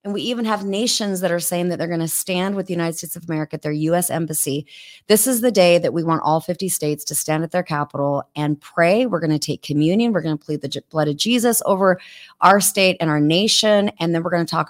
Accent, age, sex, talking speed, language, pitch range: American, 30-49, female, 265 wpm, English, 150-185 Hz